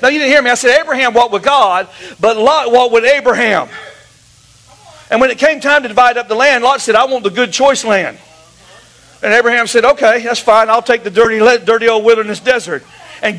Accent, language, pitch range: American, English, 245-315 Hz